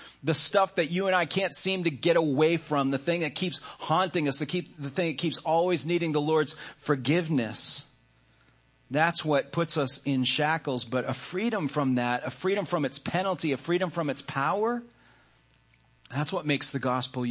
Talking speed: 185 wpm